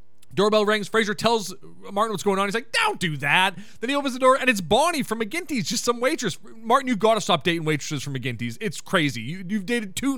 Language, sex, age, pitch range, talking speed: English, male, 30-49, 175-250 Hz, 240 wpm